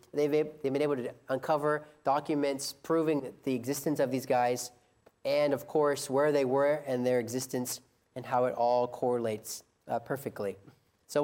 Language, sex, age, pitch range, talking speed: English, male, 30-49, 125-150 Hz, 160 wpm